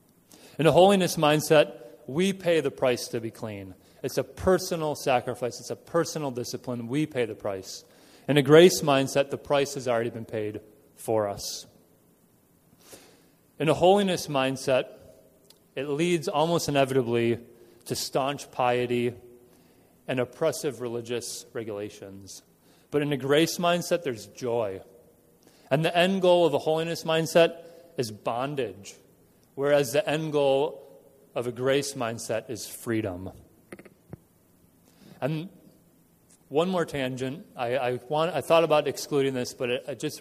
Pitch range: 120-160 Hz